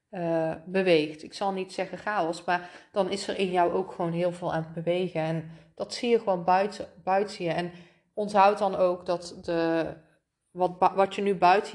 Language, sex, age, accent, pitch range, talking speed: Dutch, female, 30-49, Dutch, 170-205 Hz, 195 wpm